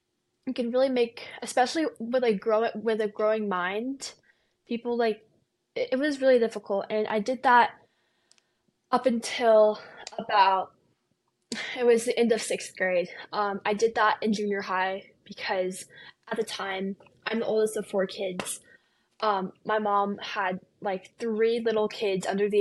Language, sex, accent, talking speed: English, female, American, 160 wpm